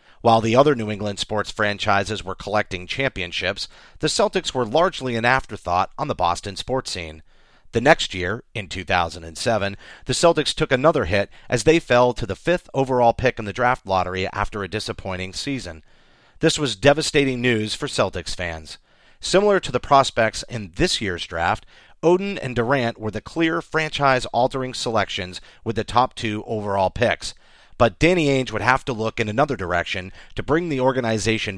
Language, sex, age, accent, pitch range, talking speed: English, male, 40-59, American, 100-135 Hz, 170 wpm